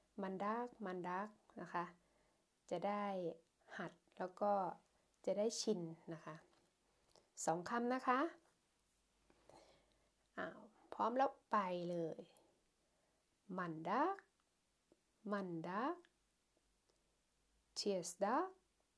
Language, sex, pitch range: Thai, female, 180-235 Hz